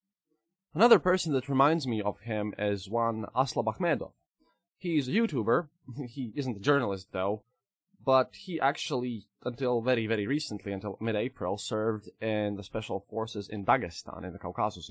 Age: 20-39